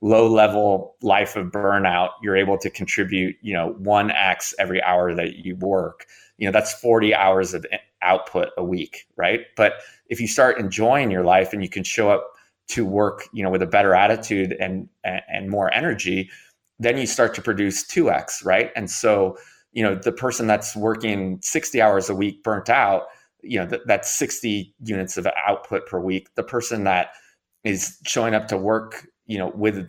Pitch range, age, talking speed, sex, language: 95-110 Hz, 20-39, 195 wpm, male, English